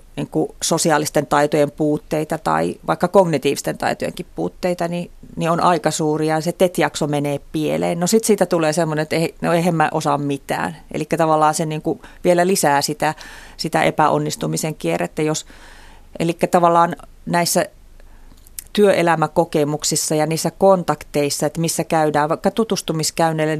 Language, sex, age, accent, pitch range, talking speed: Finnish, female, 30-49, native, 150-175 Hz, 135 wpm